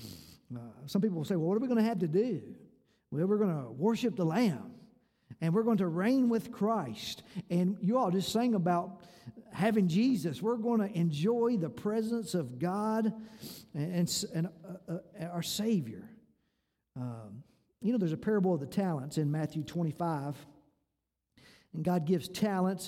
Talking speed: 170 wpm